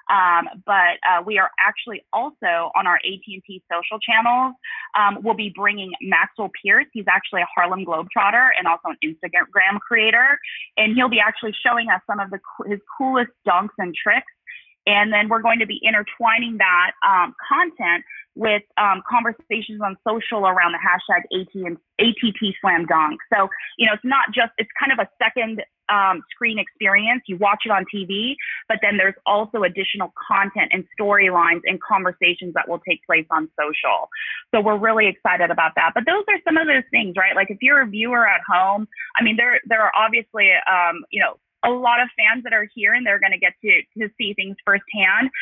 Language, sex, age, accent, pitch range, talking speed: English, female, 20-39, American, 190-235 Hz, 190 wpm